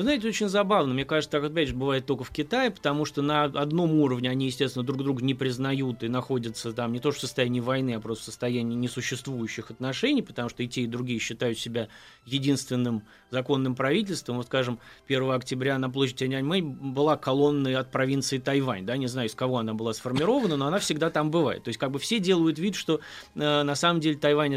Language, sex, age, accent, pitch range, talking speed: Russian, male, 20-39, native, 130-160 Hz, 215 wpm